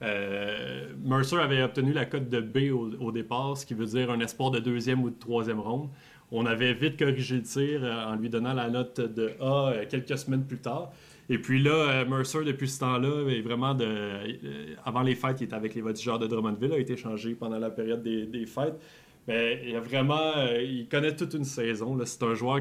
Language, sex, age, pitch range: French, male, 30-49, 115-140 Hz